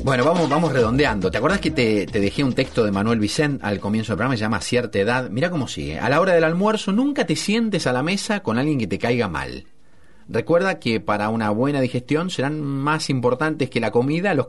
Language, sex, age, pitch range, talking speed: Spanish, male, 40-59, 105-155 Hz, 230 wpm